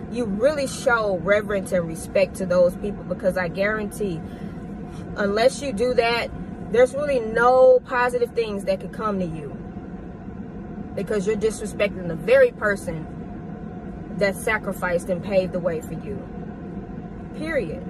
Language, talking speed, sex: English, 135 wpm, female